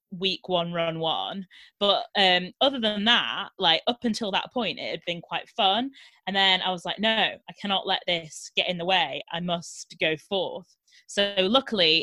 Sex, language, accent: female, English, British